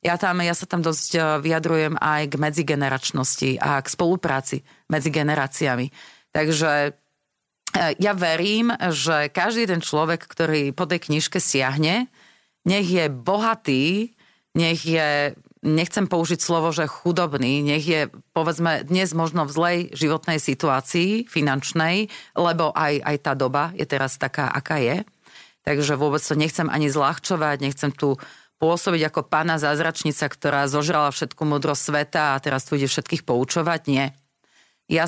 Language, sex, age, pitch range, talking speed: Slovak, female, 30-49, 145-170 Hz, 140 wpm